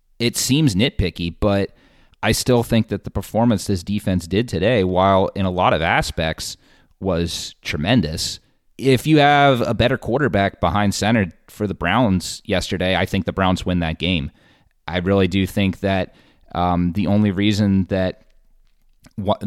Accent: American